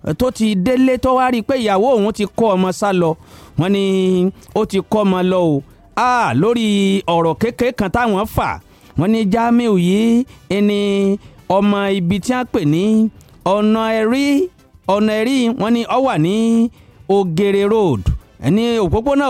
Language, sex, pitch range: English, male, 185-235 Hz